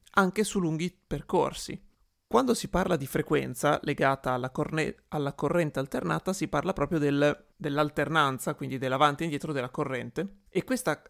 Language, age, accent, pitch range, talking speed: Italian, 30-49, native, 140-175 Hz, 140 wpm